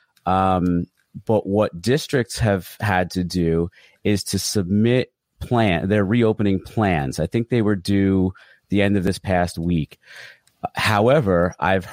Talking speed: 140 wpm